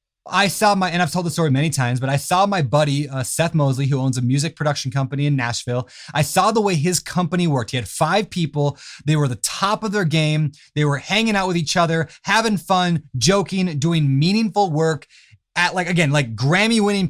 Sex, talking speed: male, 220 wpm